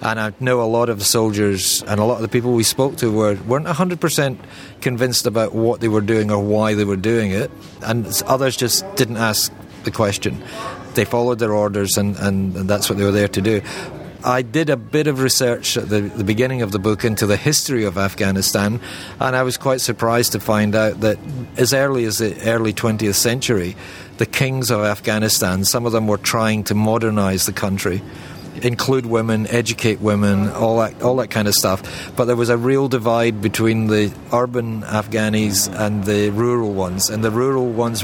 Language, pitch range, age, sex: English, 105-125 Hz, 40-59, male